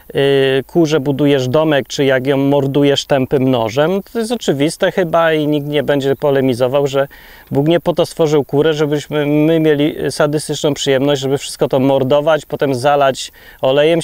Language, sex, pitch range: Polish, male, 135-160 Hz